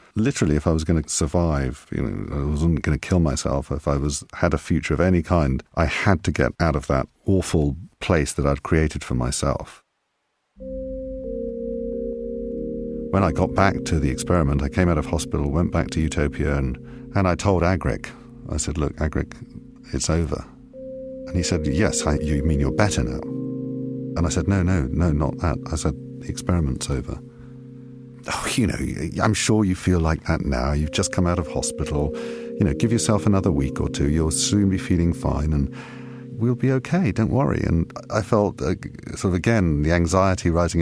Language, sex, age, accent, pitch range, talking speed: English, male, 50-69, British, 70-110 Hz, 195 wpm